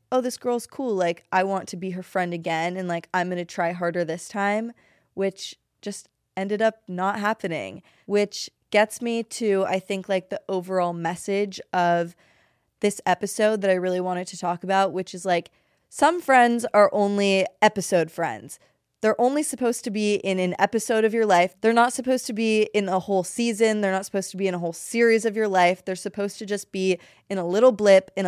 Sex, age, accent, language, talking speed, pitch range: female, 20-39, American, English, 210 wpm, 180-210 Hz